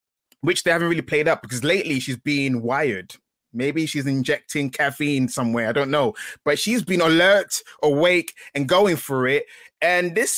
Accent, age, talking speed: British, 20-39, 175 wpm